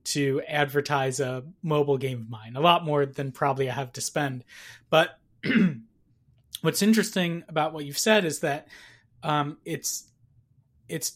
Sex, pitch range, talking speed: male, 140-170 Hz, 150 wpm